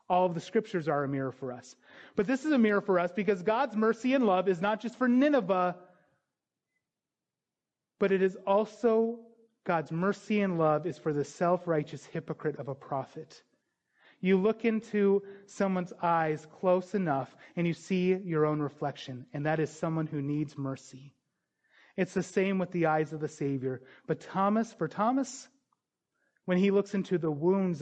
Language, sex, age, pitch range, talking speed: English, male, 30-49, 145-190 Hz, 175 wpm